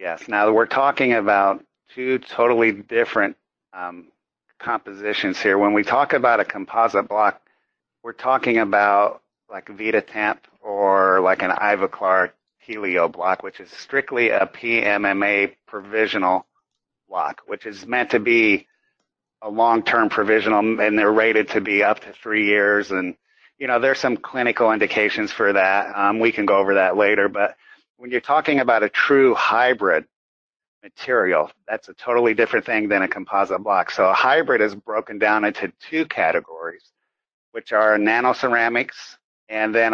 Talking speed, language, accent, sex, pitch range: 150 wpm, English, American, male, 100-120 Hz